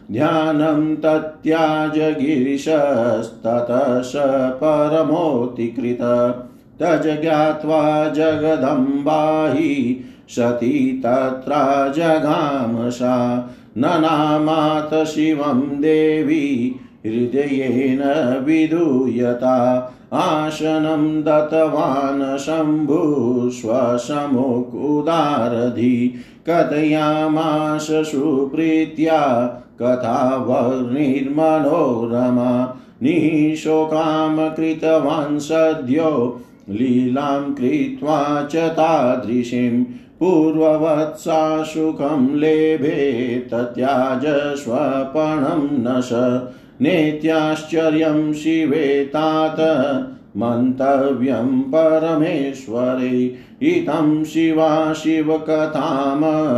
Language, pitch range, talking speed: Hindi, 125-155 Hz, 35 wpm